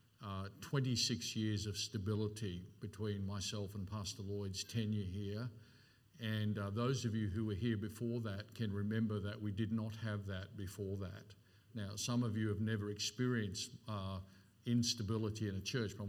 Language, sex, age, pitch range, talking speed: English, male, 50-69, 100-115 Hz, 170 wpm